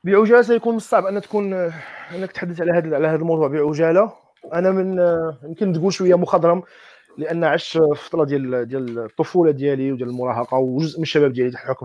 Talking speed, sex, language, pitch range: 165 wpm, male, Arabic, 145-190 Hz